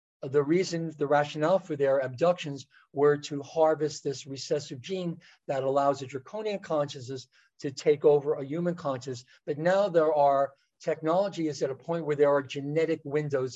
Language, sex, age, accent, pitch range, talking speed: English, male, 50-69, American, 140-175 Hz, 170 wpm